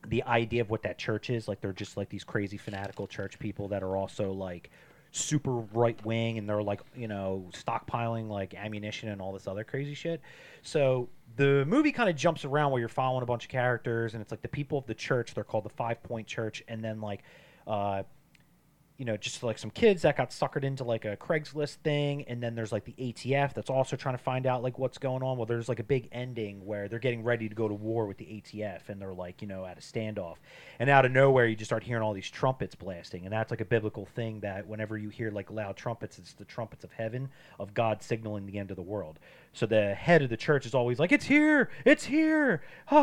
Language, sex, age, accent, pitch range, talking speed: English, male, 30-49, American, 105-135 Hz, 245 wpm